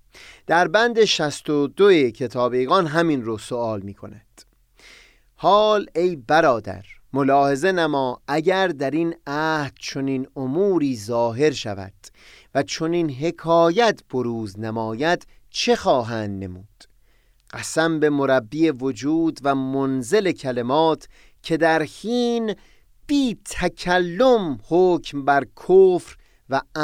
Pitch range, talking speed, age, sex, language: 125-185 Hz, 110 wpm, 30-49, male, Persian